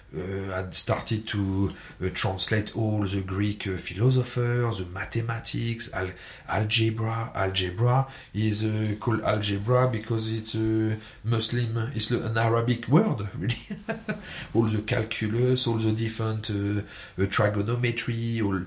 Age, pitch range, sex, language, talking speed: 40-59, 100-120 Hz, male, English, 130 wpm